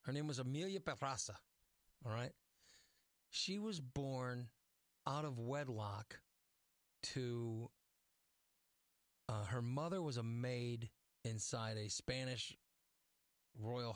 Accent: American